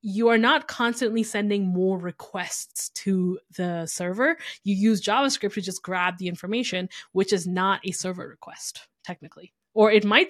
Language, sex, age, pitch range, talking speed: English, female, 20-39, 185-220 Hz, 165 wpm